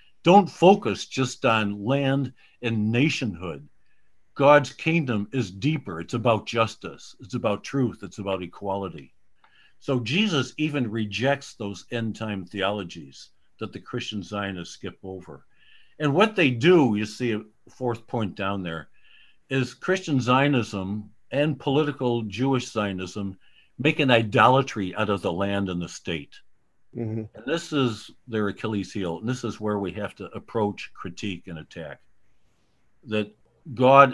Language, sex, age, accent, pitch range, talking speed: English, male, 60-79, American, 95-125 Hz, 140 wpm